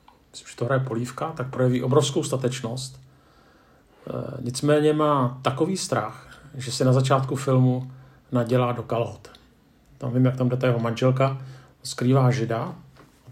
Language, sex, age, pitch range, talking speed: Czech, male, 40-59, 125-135 Hz, 145 wpm